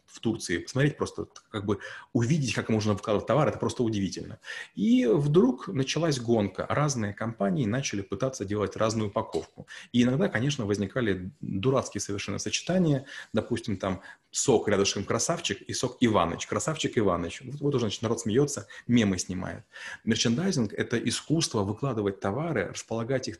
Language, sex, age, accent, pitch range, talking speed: Russian, male, 30-49, native, 100-135 Hz, 145 wpm